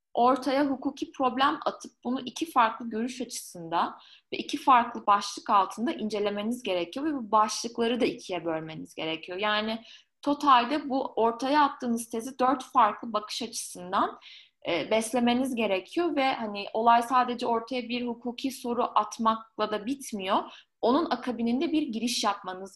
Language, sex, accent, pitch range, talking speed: Turkish, female, native, 215-265 Hz, 135 wpm